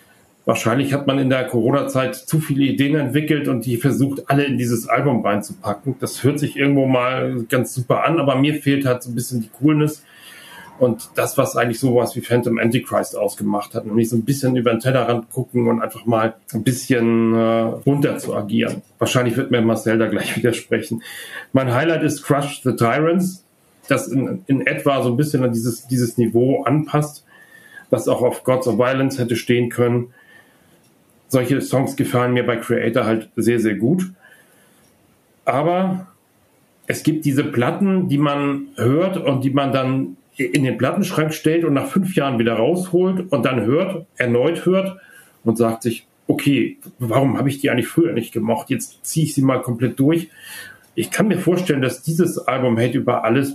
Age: 40-59